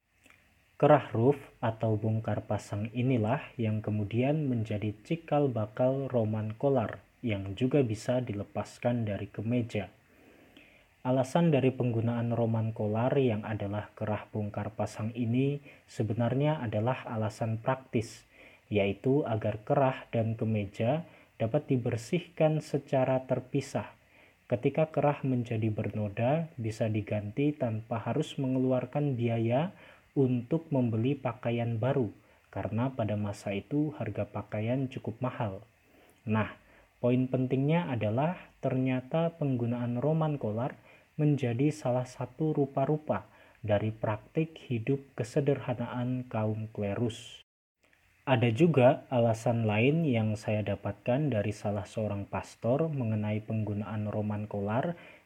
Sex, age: male, 30-49